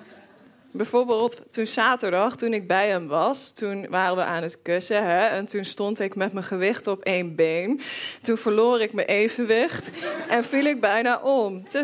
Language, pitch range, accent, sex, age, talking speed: Dutch, 195-250 Hz, Dutch, female, 20-39, 180 wpm